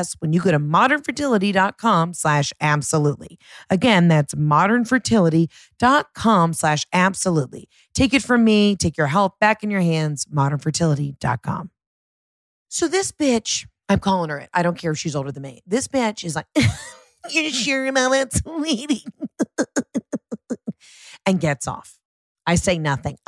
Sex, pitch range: female, 150-215 Hz